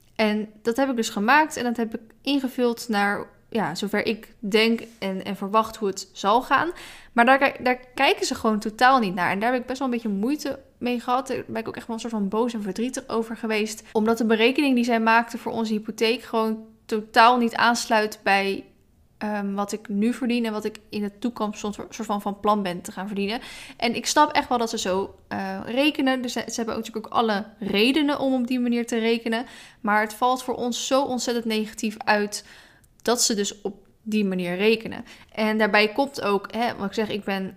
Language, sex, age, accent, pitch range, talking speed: Dutch, female, 10-29, Dutch, 205-240 Hz, 220 wpm